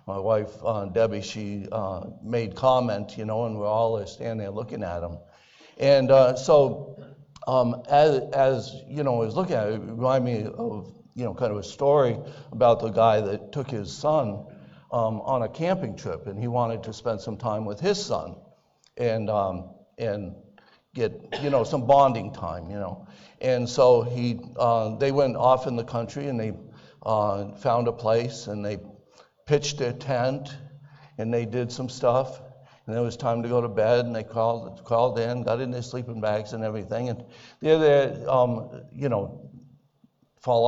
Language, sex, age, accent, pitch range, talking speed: English, male, 60-79, American, 110-135 Hz, 185 wpm